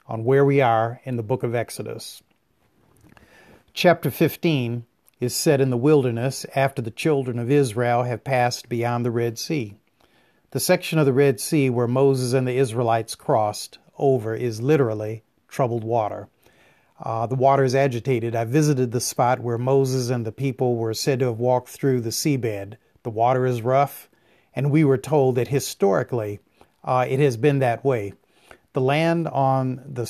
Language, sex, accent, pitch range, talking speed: English, male, American, 120-140 Hz, 170 wpm